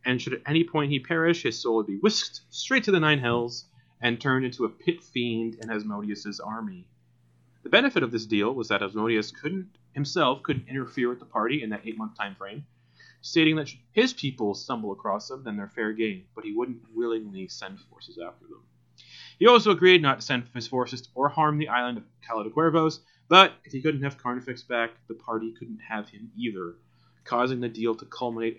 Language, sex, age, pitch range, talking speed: English, male, 30-49, 110-150 Hz, 210 wpm